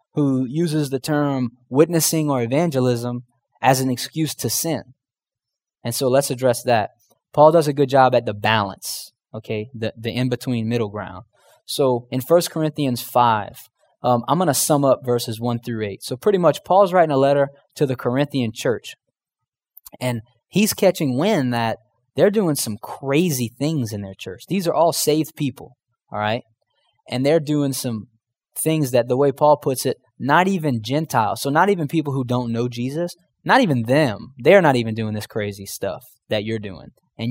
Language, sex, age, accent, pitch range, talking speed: English, male, 20-39, American, 120-150 Hz, 180 wpm